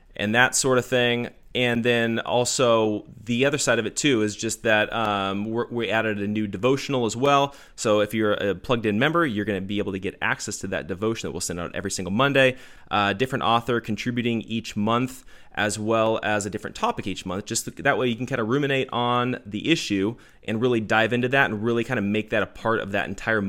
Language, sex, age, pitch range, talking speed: English, male, 20-39, 105-130 Hz, 230 wpm